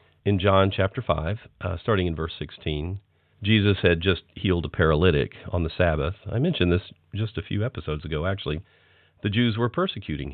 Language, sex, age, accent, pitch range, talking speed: English, male, 50-69, American, 85-110 Hz, 175 wpm